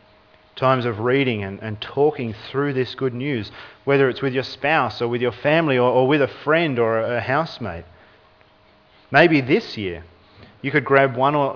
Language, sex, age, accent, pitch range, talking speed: English, male, 40-59, Australian, 105-145 Hz, 185 wpm